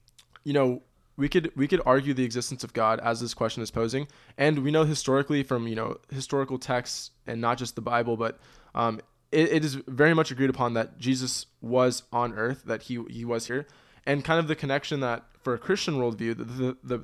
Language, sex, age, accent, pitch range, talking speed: English, male, 20-39, American, 120-140 Hz, 215 wpm